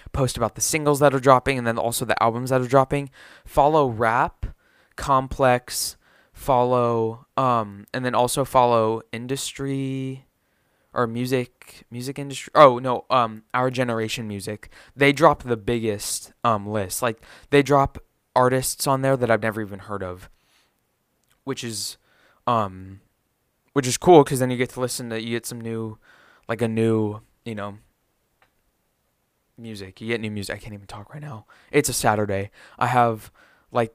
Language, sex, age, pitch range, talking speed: English, male, 20-39, 110-125 Hz, 165 wpm